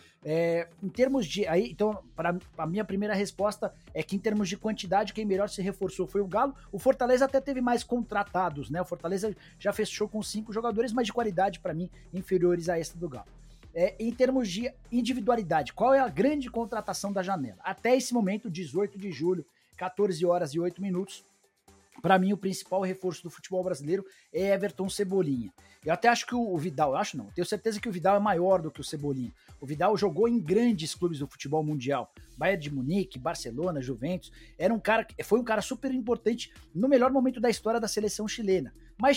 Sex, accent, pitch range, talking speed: male, Brazilian, 175-220 Hz, 200 wpm